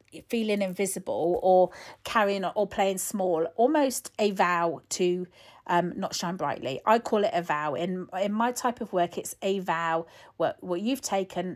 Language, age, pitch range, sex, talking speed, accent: English, 40-59, 175-230 Hz, female, 165 wpm, British